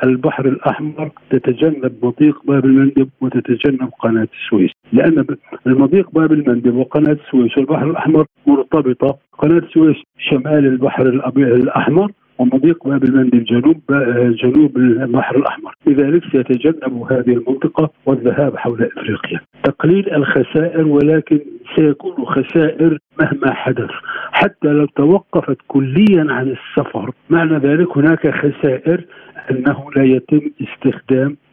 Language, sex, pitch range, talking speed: Arabic, male, 130-160 Hz, 110 wpm